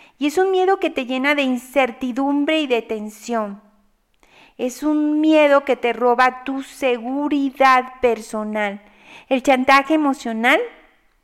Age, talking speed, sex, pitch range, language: 40-59, 130 wpm, female, 240-300 Hz, Spanish